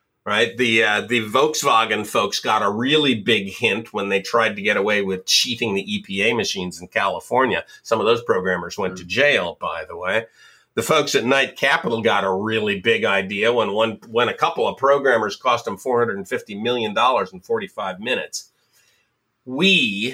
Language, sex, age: English, male, 50-69